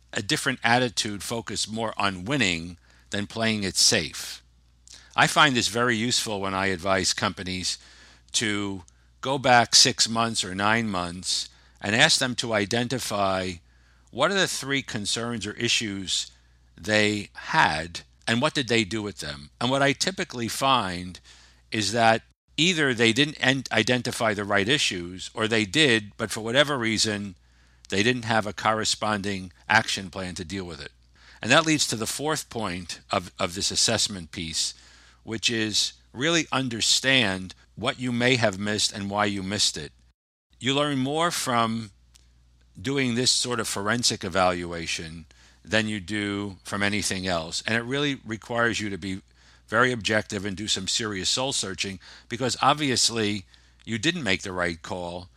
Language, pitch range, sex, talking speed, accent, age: English, 90-120 Hz, male, 160 wpm, American, 50-69